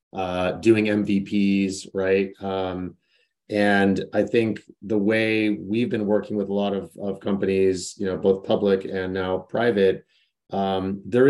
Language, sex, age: English, male, 30-49